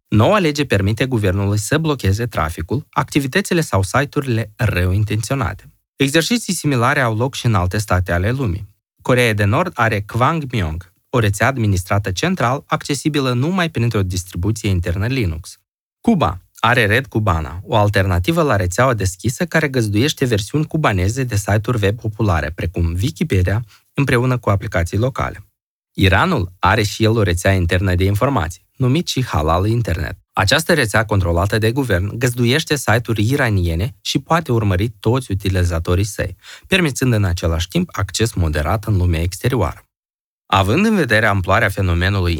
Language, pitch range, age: Romanian, 95-130 Hz, 20-39